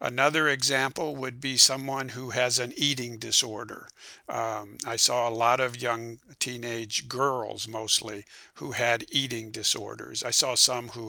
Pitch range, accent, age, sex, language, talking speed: 120-145 Hz, American, 50-69, male, English, 150 wpm